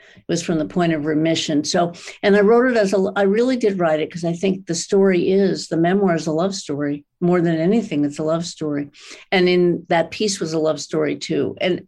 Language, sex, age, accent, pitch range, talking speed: English, female, 60-79, American, 150-190 Hz, 240 wpm